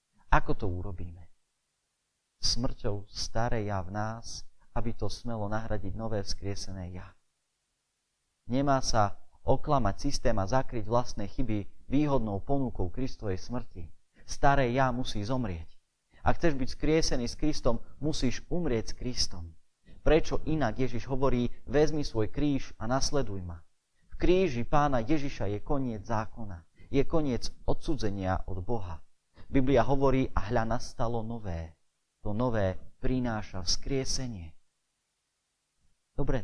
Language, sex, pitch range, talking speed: Slovak, male, 95-130 Hz, 120 wpm